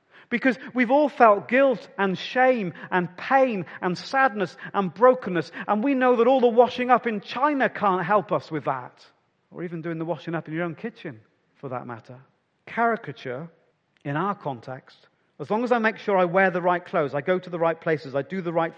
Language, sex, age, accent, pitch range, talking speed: English, male, 40-59, British, 145-195 Hz, 210 wpm